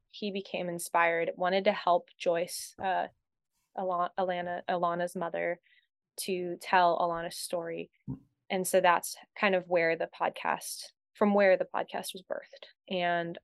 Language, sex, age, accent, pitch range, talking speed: English, female, 20-39, American, 175-195 Hz, 130 wpm